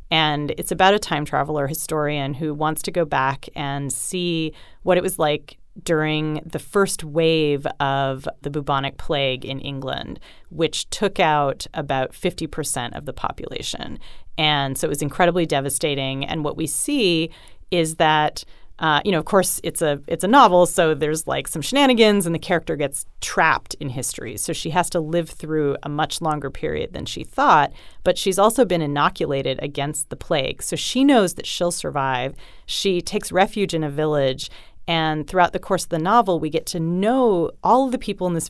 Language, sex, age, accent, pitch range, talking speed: English, female, 30-49, American, 150-185 Hz, 185 wpm